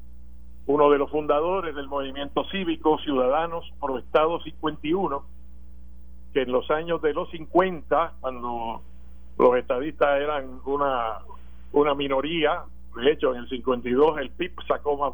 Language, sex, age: Spanish, male, 50-69